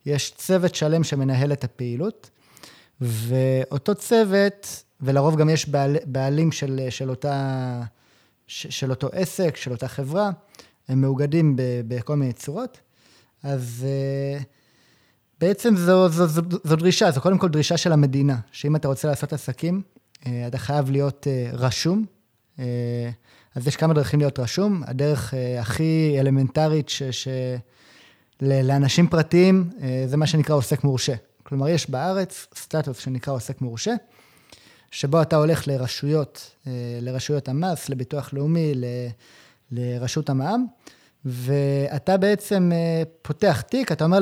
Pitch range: 130-165 Hz